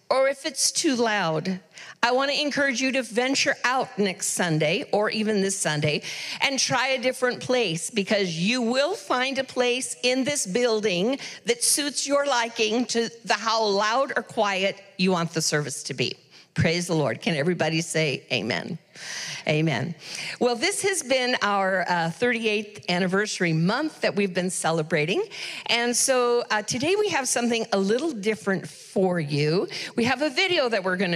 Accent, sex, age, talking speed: American, female, 50-69, 170 wpm